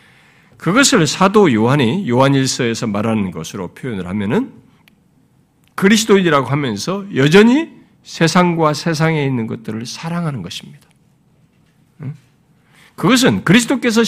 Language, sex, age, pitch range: Korean, male, 50-69, 150-220 Hz